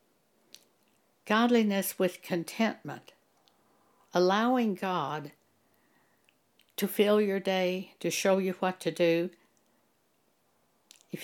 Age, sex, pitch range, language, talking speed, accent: 60-79, female, 170-220 Hz, English, 85 wpm, American